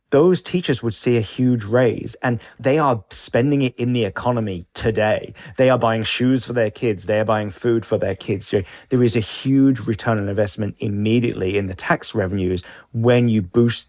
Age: 20-39